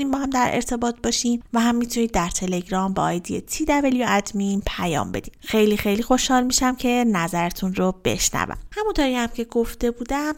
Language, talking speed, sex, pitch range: Persian, 160 wpm, female, 200-245 Hz